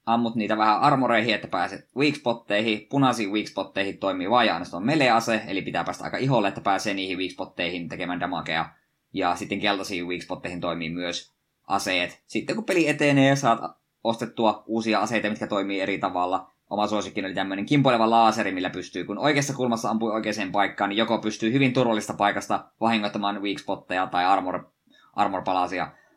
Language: Finnish